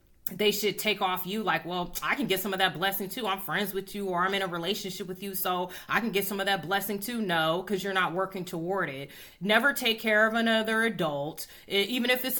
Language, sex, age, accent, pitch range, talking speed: English, female, 30-49, American, 185-220 Hz, 250 wpm